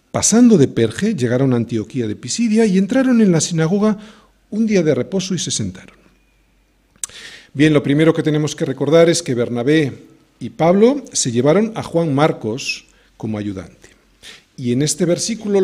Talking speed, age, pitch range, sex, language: 165 wpm, 40-59, 130-210 Hz, male, Spanish